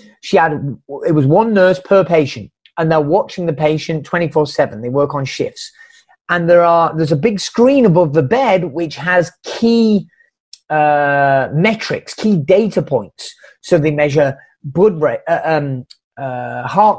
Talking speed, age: 165 wpm, 30-49